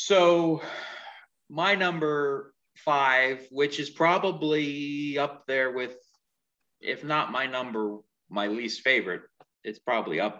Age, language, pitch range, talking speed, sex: 30-49, English, 110-160 Hz, 115 wpm, male